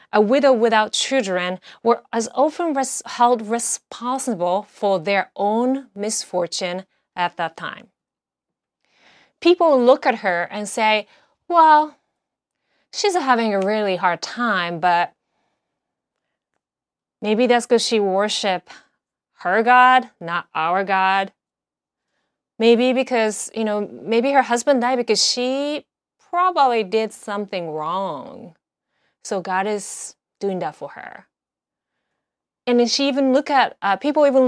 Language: English